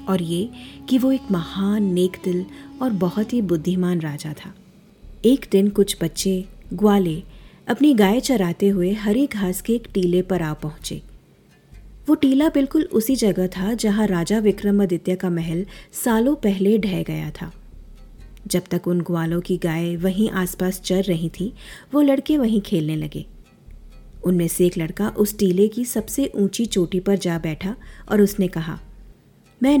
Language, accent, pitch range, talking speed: Hindi, native, 175-225 Hz, 160 wpm